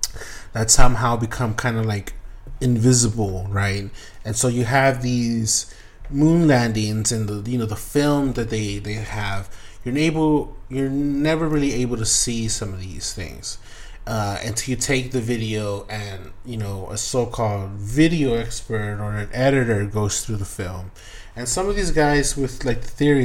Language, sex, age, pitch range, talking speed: English, male, 20-39, 100-125 Hz, 170 wpm